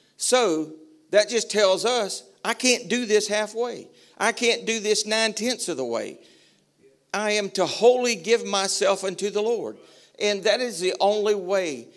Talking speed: 165 wpm